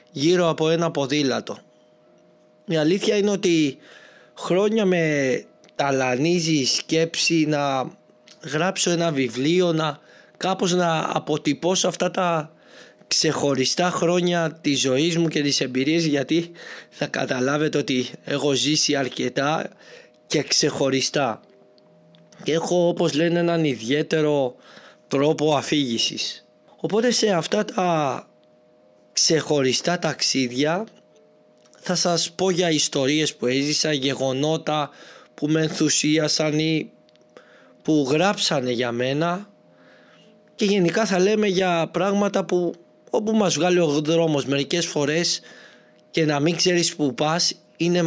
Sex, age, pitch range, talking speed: male, 20-39, 135-170 Hz, 115 wpm